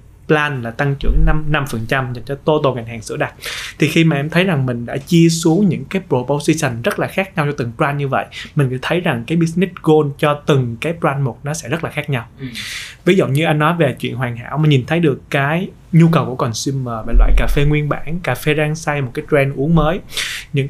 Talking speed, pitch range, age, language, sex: 250 wpm, 130-160 Hz, 20-39, Vietnamese, male